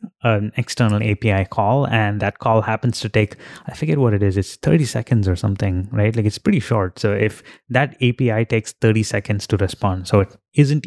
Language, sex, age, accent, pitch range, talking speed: English, male, 20-39, Indian, 100-120 Hz, 205 wpm